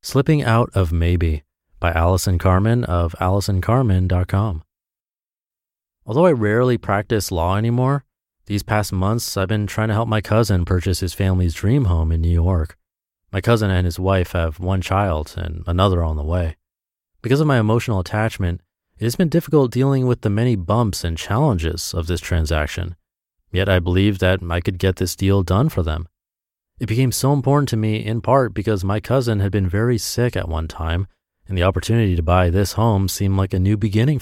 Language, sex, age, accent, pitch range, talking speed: English, male, 30-49, American, 85-110 Hz, 190 wpm